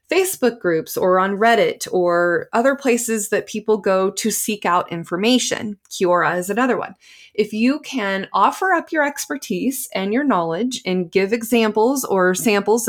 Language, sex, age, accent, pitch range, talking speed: English, female, 20-39, American, 195-245 Hz, 160 wpm